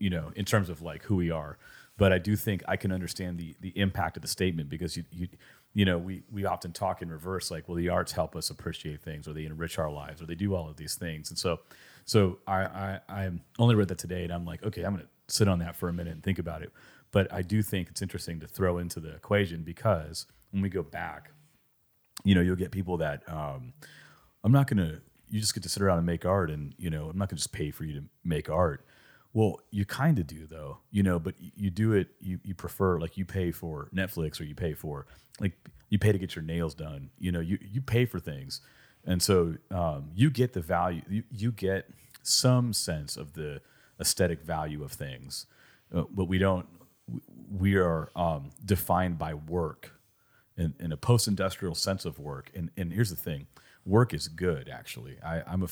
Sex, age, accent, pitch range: male, 30-49, American, 80-100 Hz